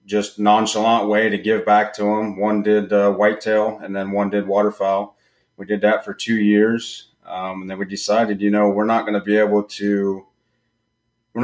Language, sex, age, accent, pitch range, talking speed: English, male, 30-49, American, 95-110 Hz, 200 wpm